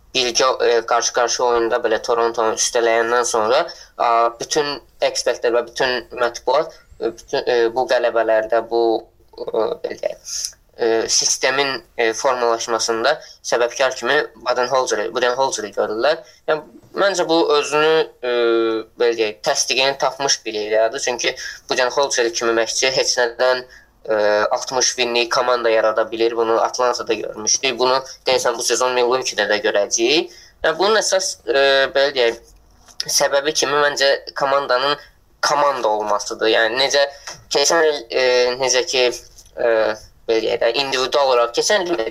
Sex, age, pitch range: female, 20-39, 115-140 Hz